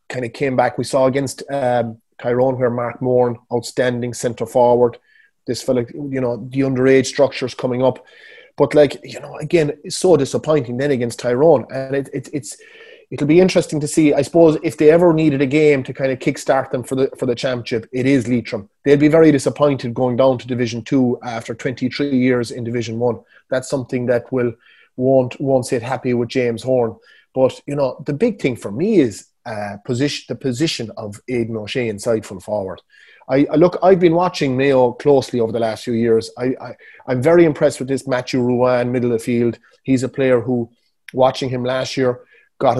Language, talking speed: English, 205 wpm